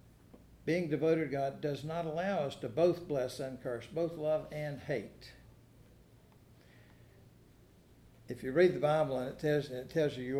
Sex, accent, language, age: male, American, English, 60-79